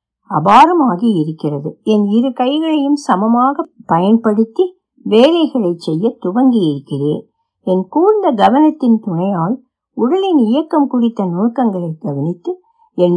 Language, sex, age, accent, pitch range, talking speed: Tamil, female, 60-79, native, 195-285 Hz, 50 wpm